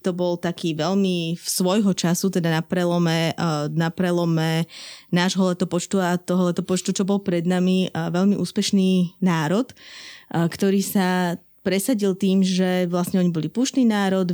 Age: 20-39